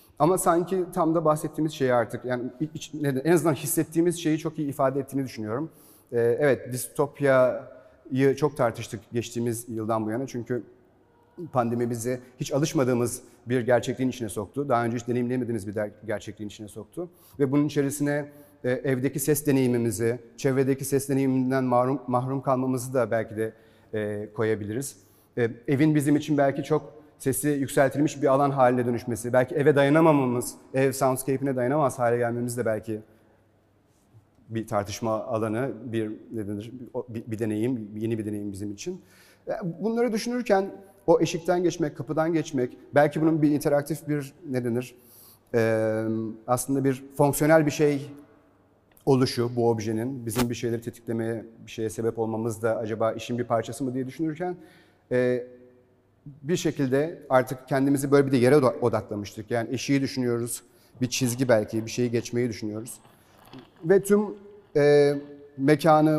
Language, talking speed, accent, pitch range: Turkish, 140 wpm, native, 115-145 Hz